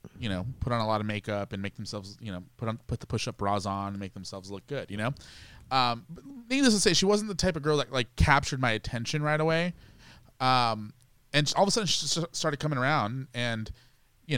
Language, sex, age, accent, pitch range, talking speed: English, male, 20-39, American, 115-140 Hz, 235 wpm